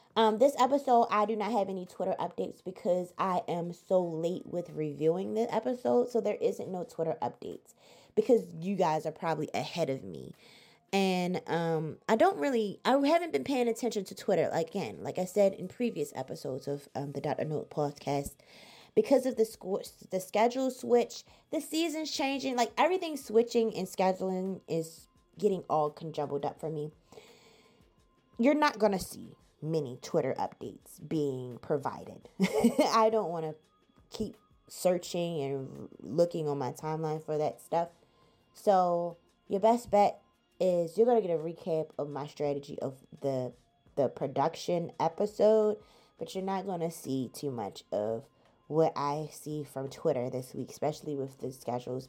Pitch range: 150-215 Hz